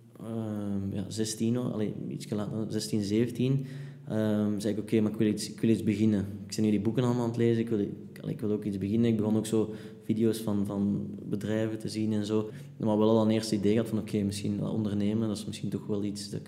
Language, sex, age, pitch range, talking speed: Dutch, male, 20-39, 105-120 Hz, 250 wpm